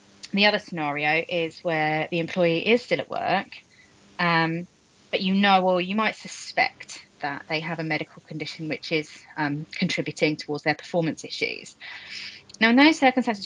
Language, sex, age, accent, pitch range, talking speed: English, female, 30-49, British, 155-180 Hz, 165 wpm